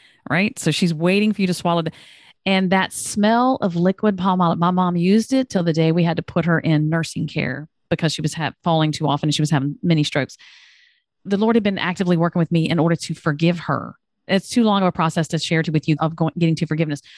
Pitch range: 160-195 Hz